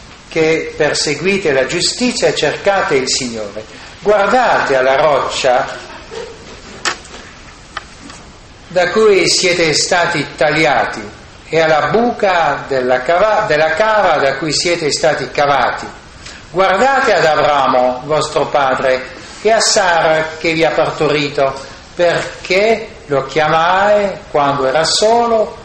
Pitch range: 145-195 Hz